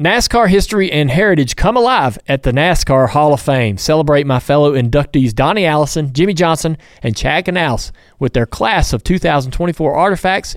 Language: English